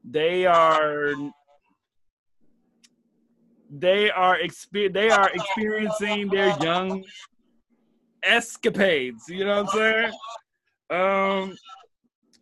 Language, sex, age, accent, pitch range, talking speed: English, male, 30-49, American, 165-215 Hz, 80 wpm